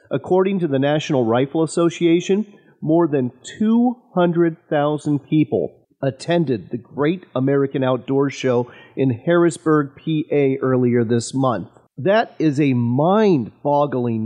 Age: 40-59